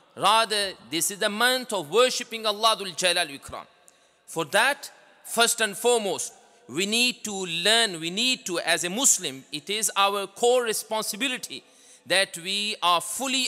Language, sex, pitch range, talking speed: English, male, 200-250 Hz, 140 wpm